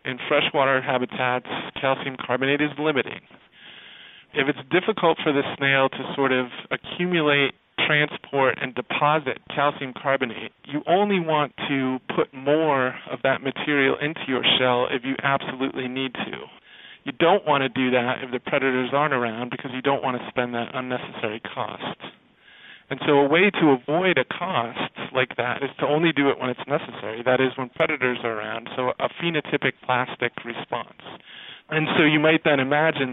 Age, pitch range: 40-59, 125-150 Hz